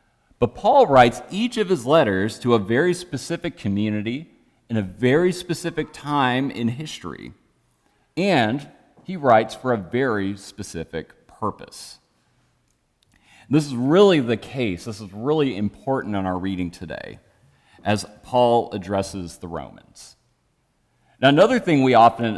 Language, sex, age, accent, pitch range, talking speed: English, male, 40-59, American, 105-145 Hz, 135 wpm